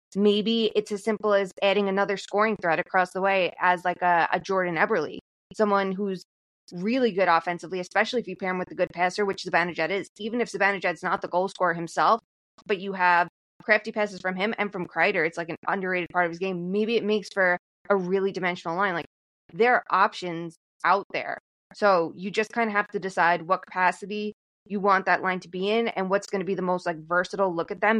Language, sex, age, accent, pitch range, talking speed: English, female, 20-39, American, 175-210 Hz, 225 wpm